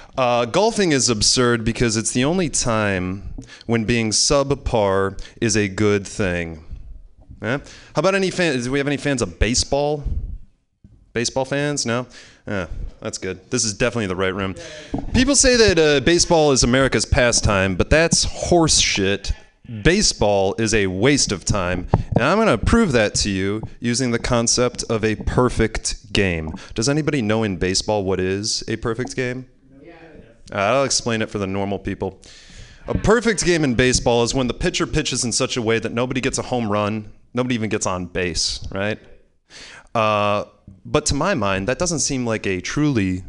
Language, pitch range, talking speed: English, 100-135 Hz, 175 wpm